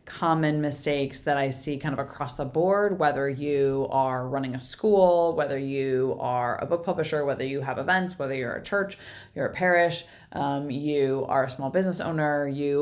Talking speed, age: 190 wpm, 20-39